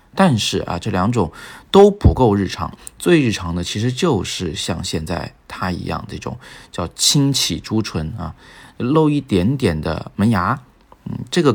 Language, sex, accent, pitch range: Chinese, male, native, 90-110 Hz